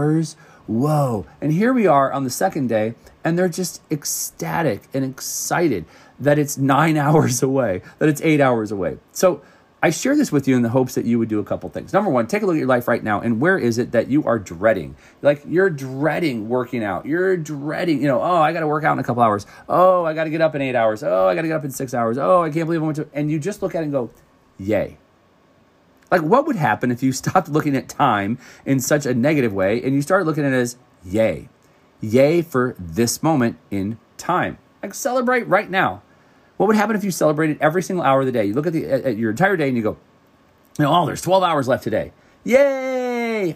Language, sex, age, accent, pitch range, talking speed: English, male, 30-49, American, 120-165 Hz, 240 wpm